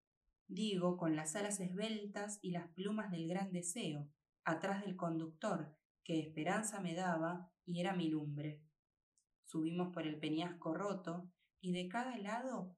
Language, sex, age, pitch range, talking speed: Spanish, female, 20-39, 160-200 Hz, 145 wpm